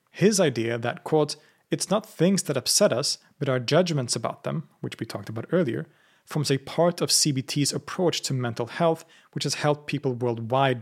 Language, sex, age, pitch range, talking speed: English, male, 30-49, 125-150 Hz, 185 wpm